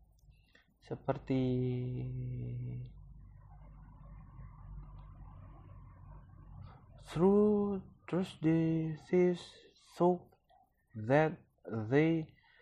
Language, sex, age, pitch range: Indonesian, male, 30-49, 120-150 Hz